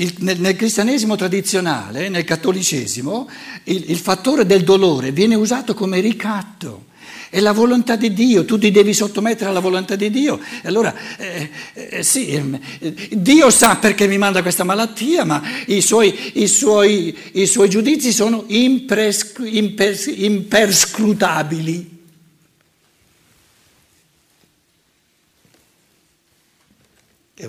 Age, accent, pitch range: 60-79, native, 145-215 Hz